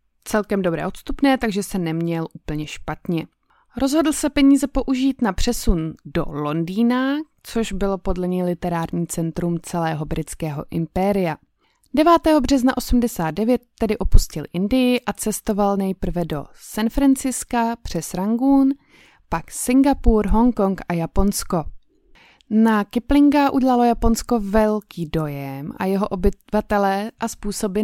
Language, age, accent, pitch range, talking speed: Czech, 20-39, native, 175-240 Hz, 120 wpm